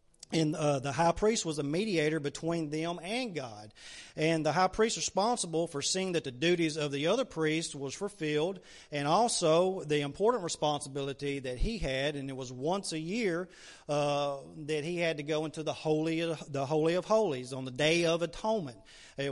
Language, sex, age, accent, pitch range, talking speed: English, male, 40-59, American, 140-165 Hz, 195 wpm